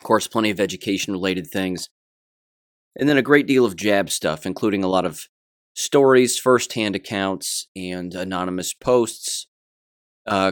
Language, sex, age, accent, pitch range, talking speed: English, male, 30-49, American, 90-110 Hz, 145 wpm